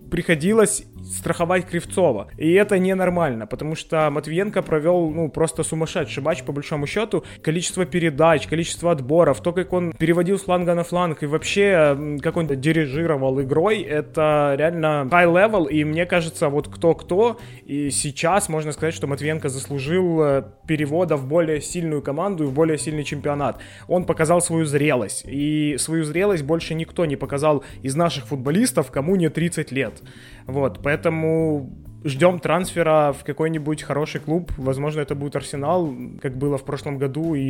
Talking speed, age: 155 wpm, 20-39